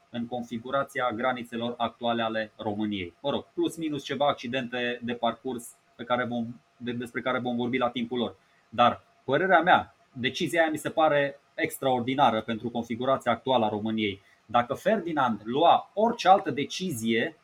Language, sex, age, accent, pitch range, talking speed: Romanian, male, 20-39, native, 120-150 Hz, 150 wpm